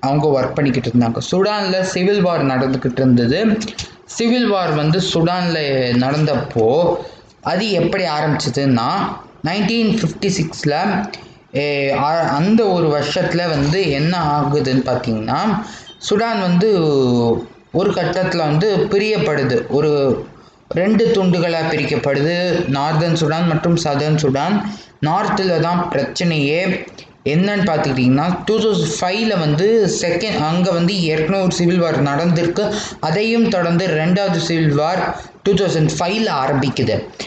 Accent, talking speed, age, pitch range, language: native, 100 wpm, 20-39, 145-190 Hz, Tamil